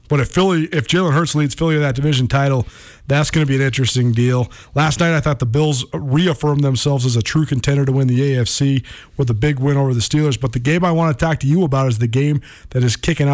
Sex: male